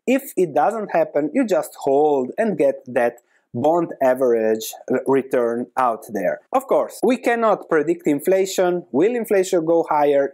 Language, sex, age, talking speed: English, male, 30-49, 145 wpm